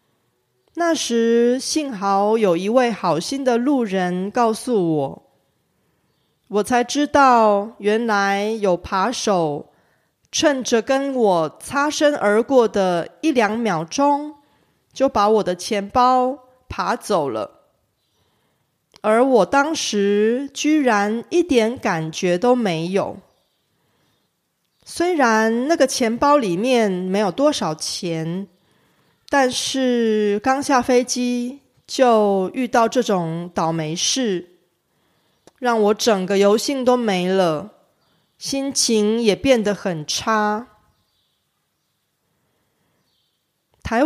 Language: Korean